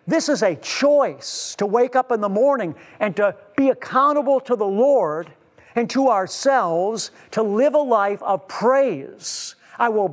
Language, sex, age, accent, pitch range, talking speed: English, male, 50-69, American, 210-265 Hz, 165 wpm